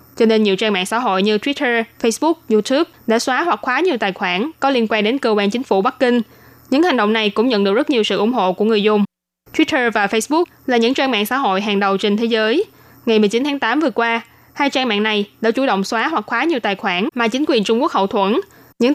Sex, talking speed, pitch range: female, 265 wpm, 210-255 Hz